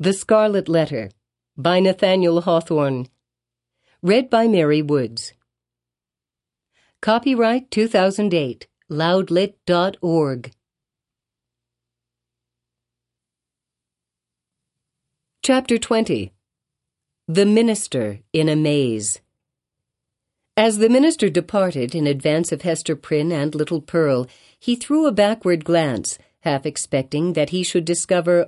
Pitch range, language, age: 135-190 Hz, English, 50-69